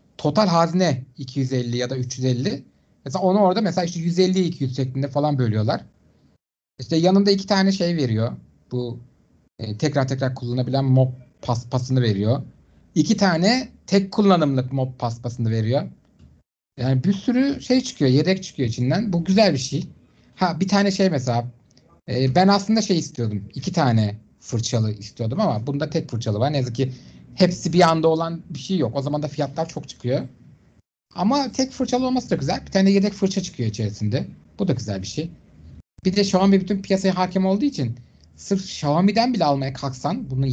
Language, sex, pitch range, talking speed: Turkish, male, 125-185 Hz, 170 wpm